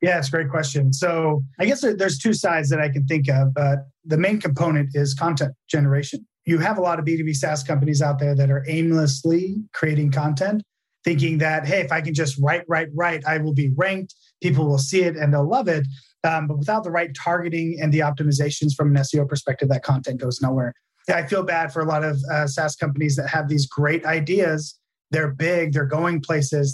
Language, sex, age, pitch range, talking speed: English, male, 30-49, 145-165 Hz, 220 wpm